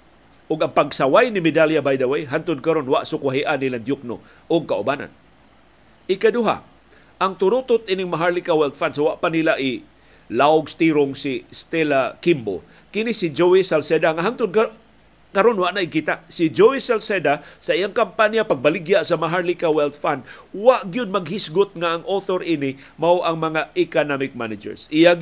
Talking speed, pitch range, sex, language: 150 wpm, 140-180 Hz, male, Filipino